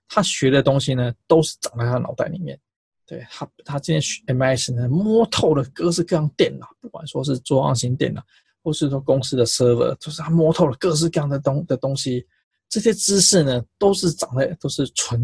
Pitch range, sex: 130-175 Hz, male